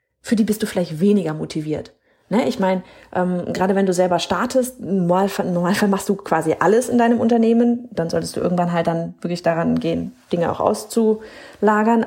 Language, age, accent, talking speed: German, 30-49, German, 175 wpm